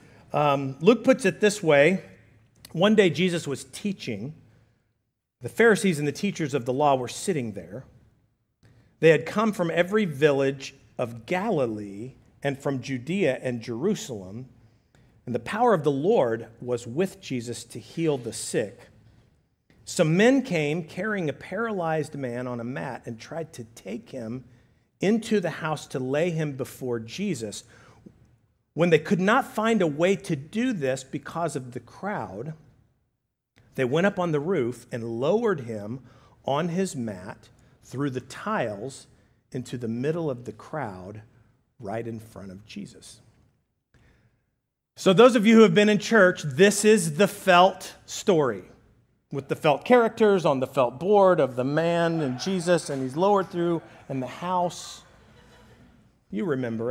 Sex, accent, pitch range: male, American, 120-180 Hz